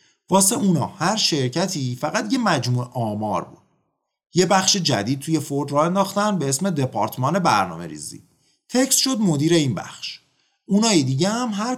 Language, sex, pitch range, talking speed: Persian, male, 125-185 Hz, 150 wpm